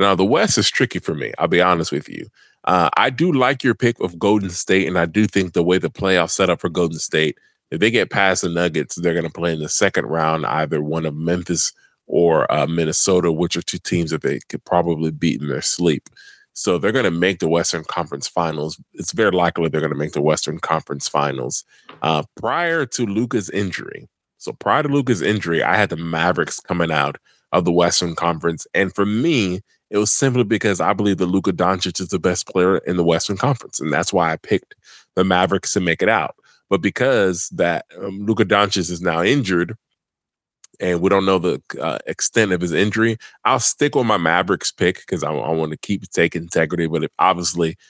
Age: 30-49